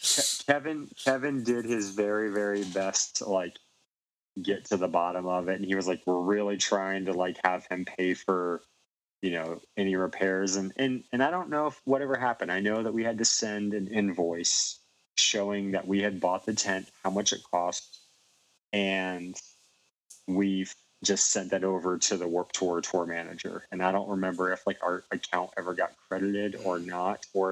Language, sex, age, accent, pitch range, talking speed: English, male, 30-49, American, 95-110 Hz, 190 wpm